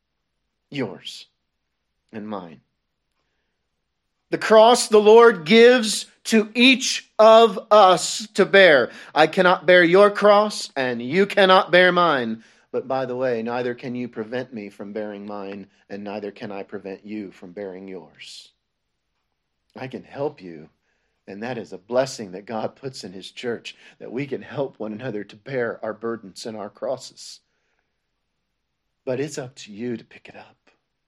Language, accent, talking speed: English, American, 160 wpm